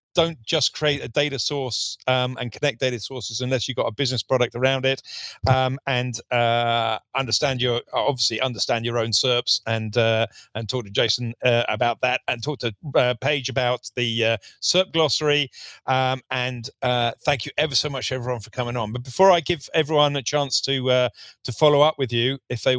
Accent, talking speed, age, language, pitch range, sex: British, 200 wpm, 40-59, English, 110-140 Hz, male